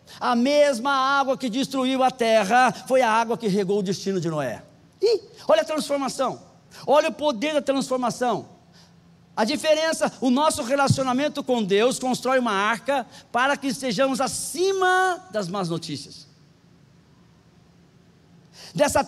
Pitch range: 180-270 Hz